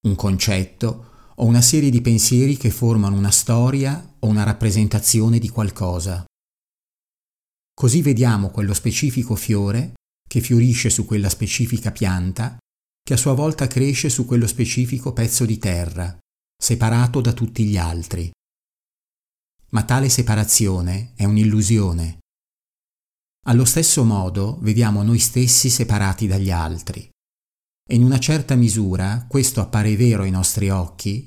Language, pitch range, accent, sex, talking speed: Italian, 100-120 Hz, native, male, 130 wpm